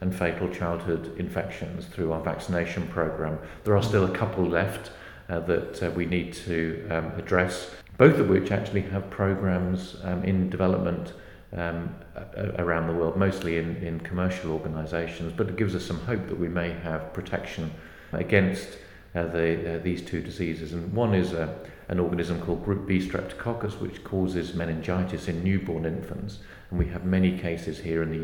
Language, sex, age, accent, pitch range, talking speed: English, male, 40-59, British, 85-100 Hz, 170 wpm